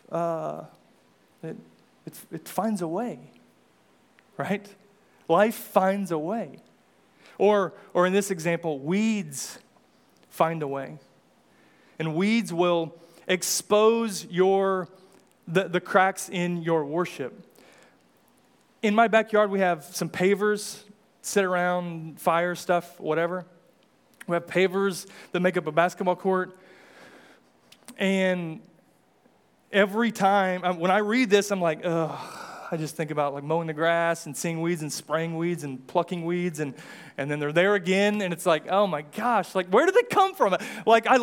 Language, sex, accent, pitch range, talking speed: English, male, American, 170-215 Hz, 145 wpm